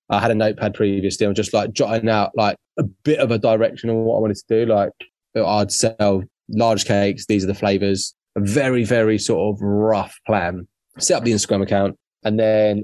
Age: 20-39